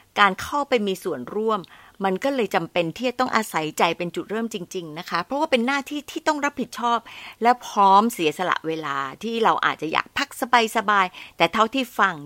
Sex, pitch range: female, 185-255 Hz